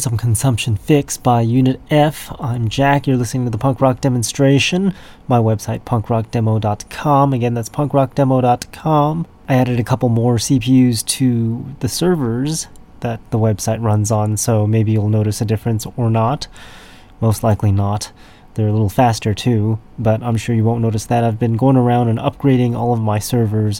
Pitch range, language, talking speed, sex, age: 105-125 Hz, English, 170 wpm, male, 30-49